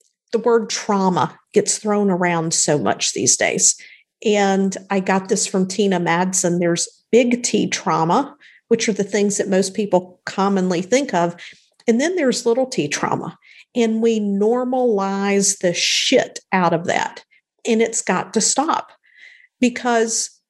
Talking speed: 150 wpm